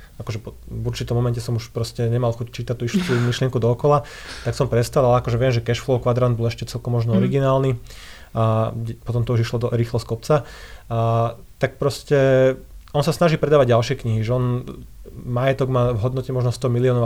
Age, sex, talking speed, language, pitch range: 30-49, male, 190 wpm, Slovak, 115-130 Hz